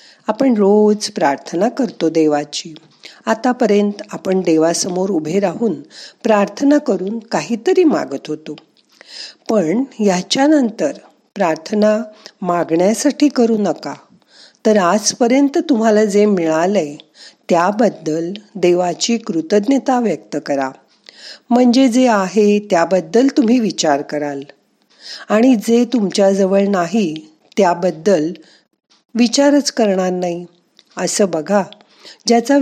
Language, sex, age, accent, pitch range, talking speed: Marathi, female, 50-69, native, 170-230 Hz, 75 wpm